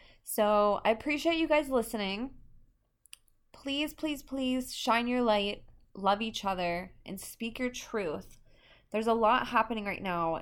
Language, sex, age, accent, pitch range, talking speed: English, female, 20-39, American, 165-220 Hz, 145 wpm